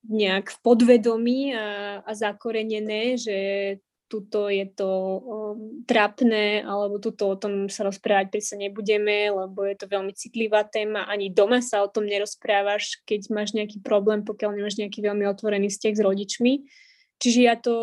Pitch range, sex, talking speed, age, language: 210-240 Hz, female, 160 wpm, 20-39, Slovak